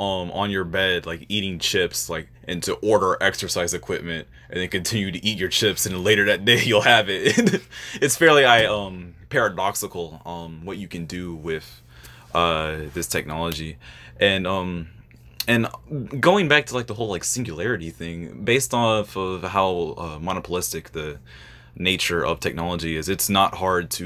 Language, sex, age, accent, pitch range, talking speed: English, male, 20-39, American, 80-100 Hz, 170 wpm